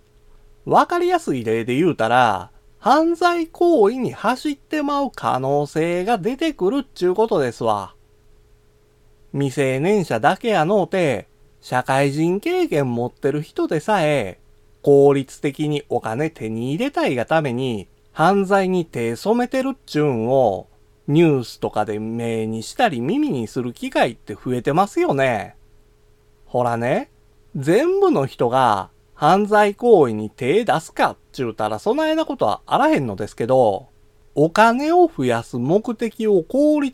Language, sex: Japanese, male